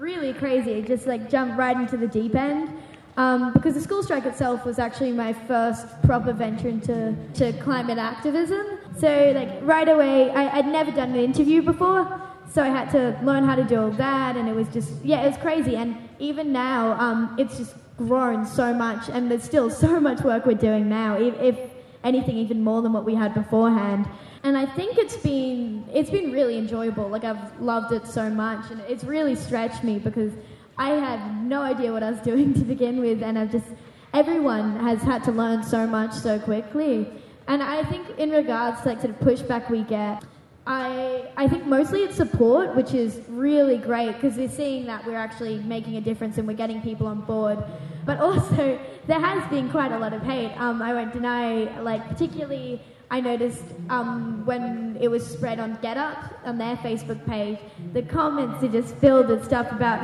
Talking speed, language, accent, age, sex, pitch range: 205 wpm, English, Australian, 10-29, female, 225-270 Hz